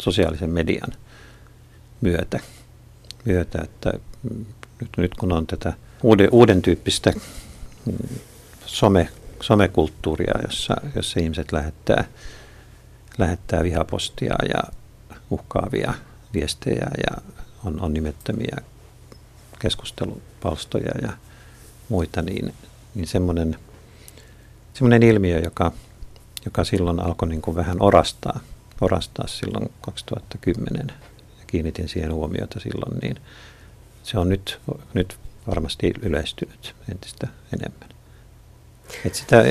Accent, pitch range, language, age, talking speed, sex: native, 85-110 Hz, Finnish, 50-69, 90 wpm, male